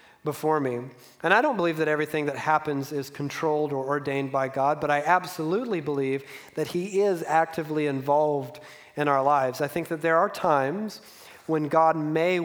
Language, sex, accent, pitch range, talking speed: English, male, American, 145-170 Hz, 180 wpm